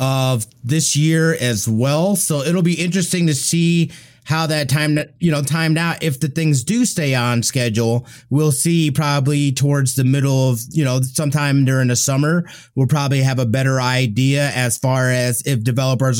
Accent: American